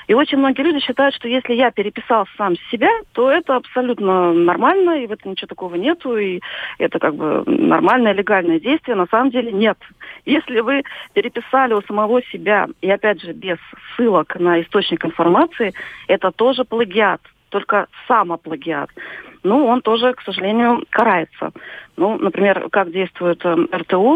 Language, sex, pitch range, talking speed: Russian, female, 175-240 Hz, 155 wpm